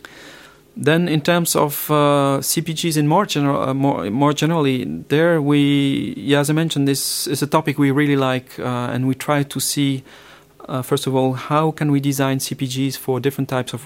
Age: 40-59